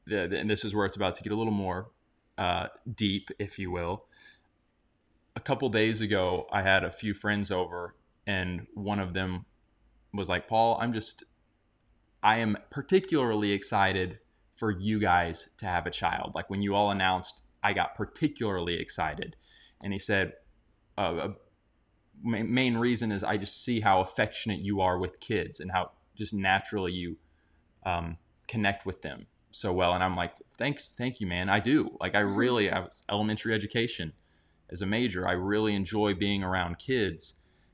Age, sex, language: 20-39, male, English